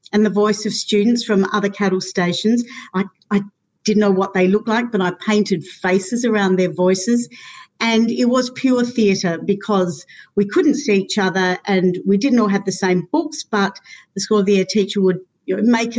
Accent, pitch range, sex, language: Australian, 200-265 Hz, female, English